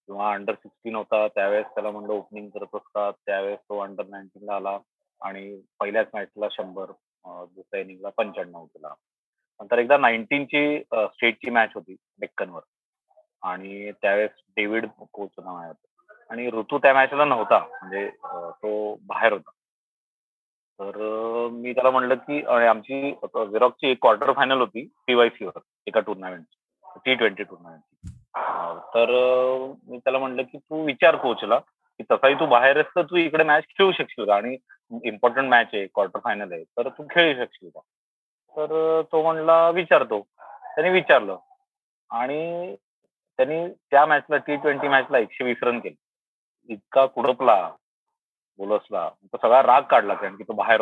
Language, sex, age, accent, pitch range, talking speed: Marathi, male, 30-49, native, 105-145 Hz, 140 wpm